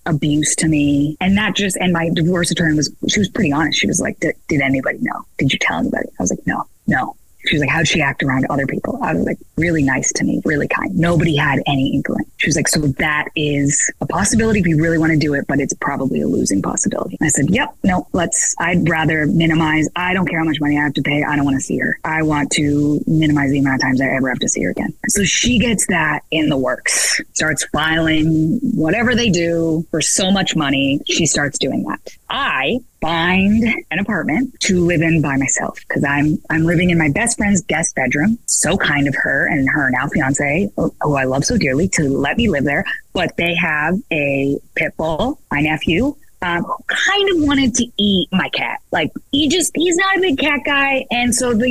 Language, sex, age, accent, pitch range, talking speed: English, female, 20-39, American, 150-205 Hz, 230 wpm